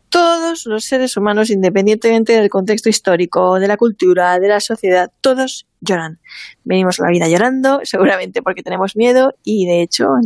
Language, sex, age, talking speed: Spanish, female, 20-39, 165 wpm